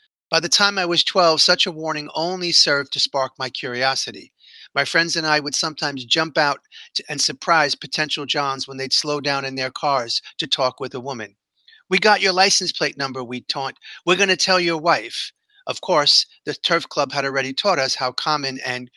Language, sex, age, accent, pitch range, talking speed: English, male, 40-59, American, 135-170 Hz, 205 wpm